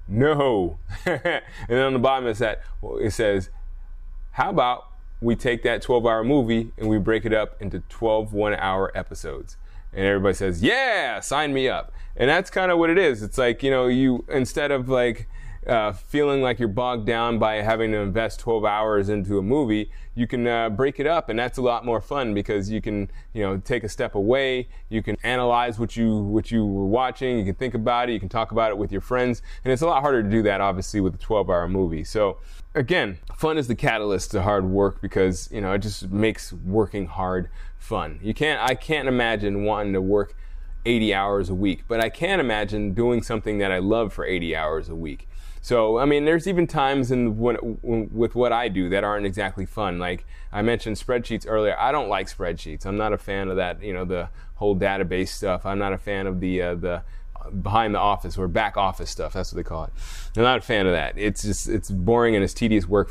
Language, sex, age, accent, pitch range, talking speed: English, male, 20-39, American, 95-115 Hz, 225 wpm